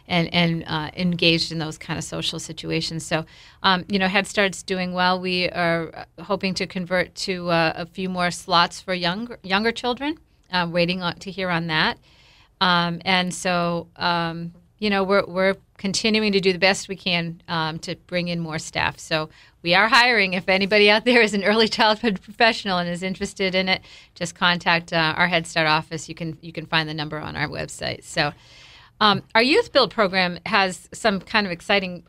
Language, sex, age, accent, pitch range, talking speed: English, female, 40-59, American, 170-195 Hz, 200 wpm